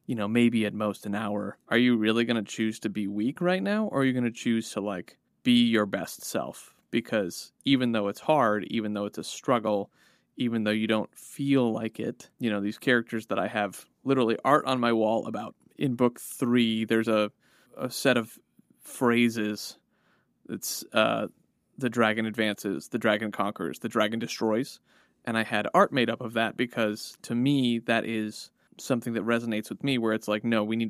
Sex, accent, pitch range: male, American, 105-125 Hz